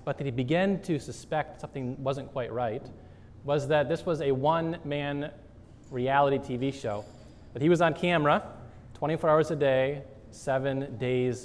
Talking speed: 155 wpm